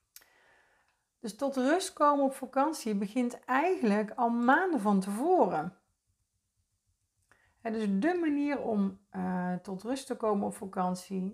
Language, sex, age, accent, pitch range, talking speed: Dutch, female, 40-59, Dutch, 180-235 Hz, 120 wpm